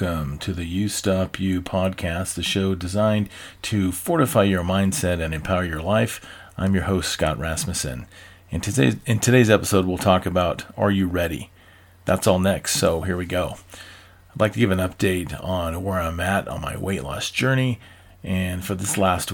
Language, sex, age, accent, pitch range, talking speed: English, male, 40-59, American, 90-100 Hz, 185 wpm